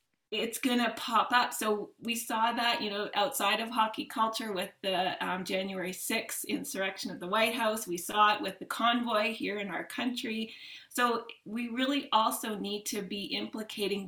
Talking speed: 180 wpm